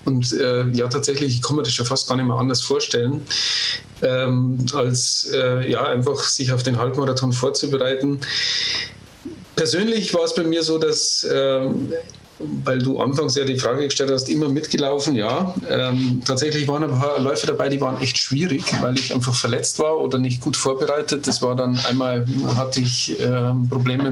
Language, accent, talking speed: German, German, 180 wpm